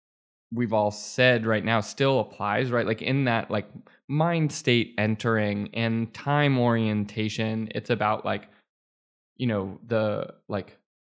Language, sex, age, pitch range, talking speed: English, male, 20-39, 105-120 Hz, 135 wpm